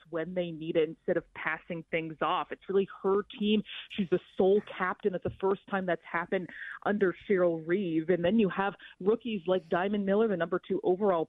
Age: 30-49